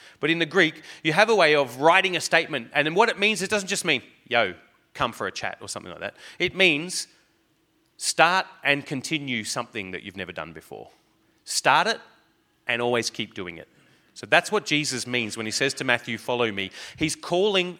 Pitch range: 125-165 Hz